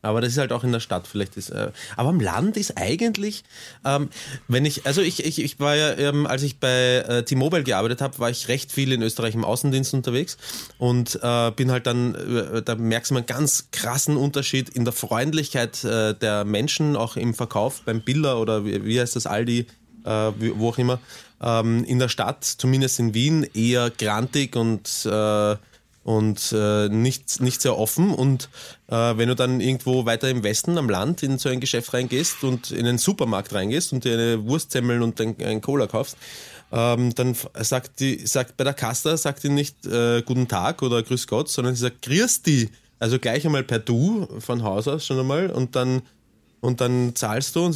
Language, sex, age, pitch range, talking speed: German, male, 20-39, 115-140 Hz, 205 wpm